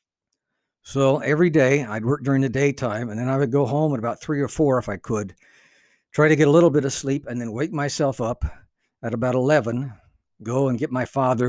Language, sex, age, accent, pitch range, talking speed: English, male, 60-79, American, 115-145 Hz, 225 wpm